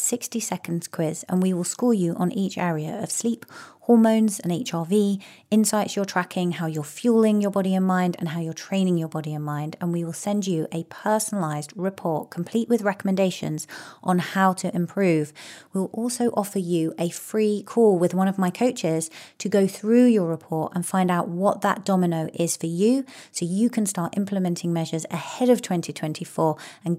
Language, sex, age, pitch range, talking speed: English, female, 30-49, 165-205 Hz, 190 wpm